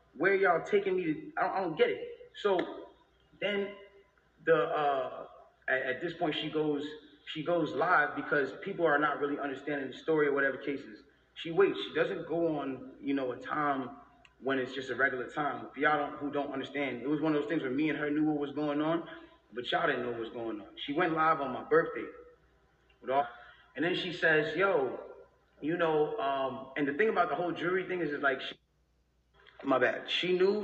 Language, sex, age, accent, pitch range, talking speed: English, male, 20-39, American, 135-175 Hz, 215 wpm